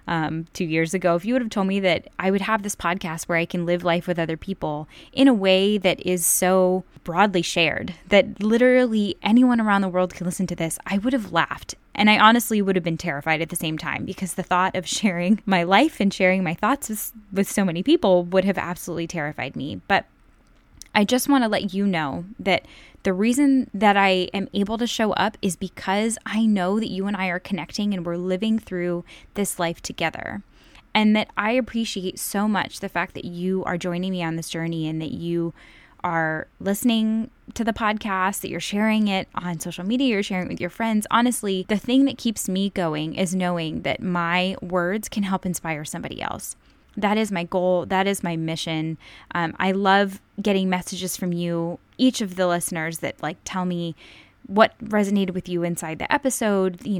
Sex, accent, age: female, American, 10-29